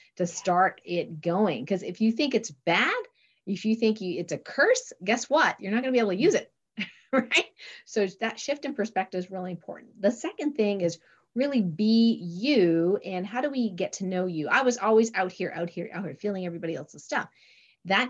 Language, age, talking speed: English, 40-59, 220 wpm